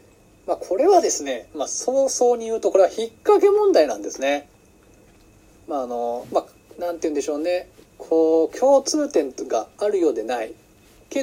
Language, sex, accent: Japanese, male, native